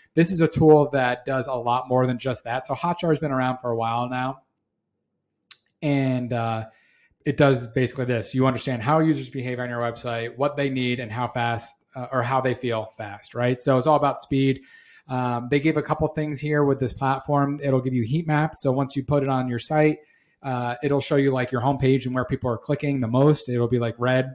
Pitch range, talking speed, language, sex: 125-140 Hz, 230 wpm, English, male